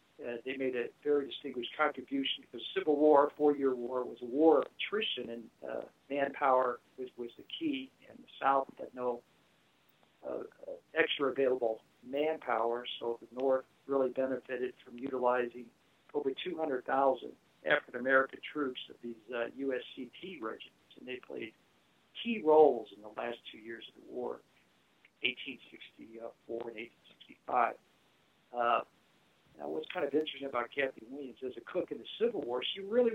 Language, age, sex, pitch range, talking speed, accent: English, 60-79, male, 120-150 Hz, 150 wpm, American